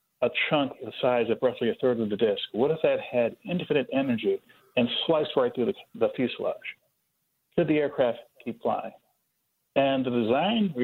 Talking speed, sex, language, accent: 175 wpm, male, English, American